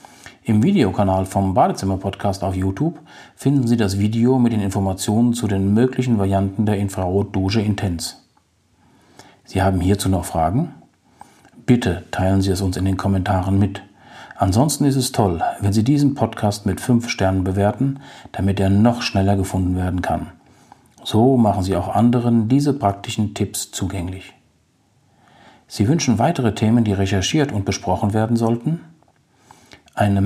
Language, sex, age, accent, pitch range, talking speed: German, male, 50-69, German, 95-120 Hz, 145 wpm